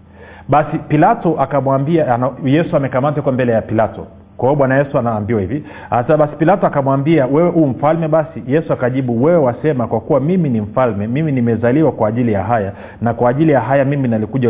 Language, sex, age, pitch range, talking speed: Swahili, male, 40-59, 110-155 Hz, 180 wpm